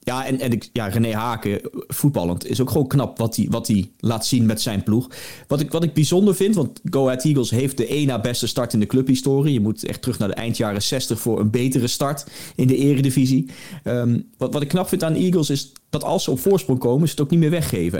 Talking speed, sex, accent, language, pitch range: 245 wpm, male, Dutch, Dutch, 110-140 Hz